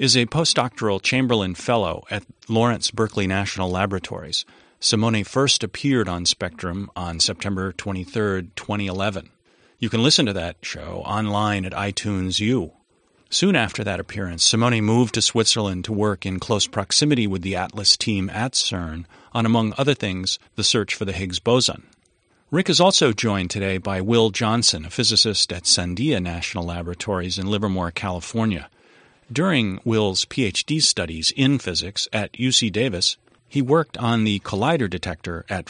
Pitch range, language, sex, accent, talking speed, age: 95-120 Hz, English, male, American, 155 wpm, 40-59